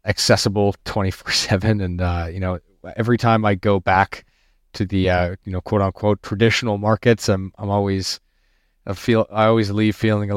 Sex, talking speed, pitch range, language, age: male, 180 wpm, 95-110 Hz, English, 30-49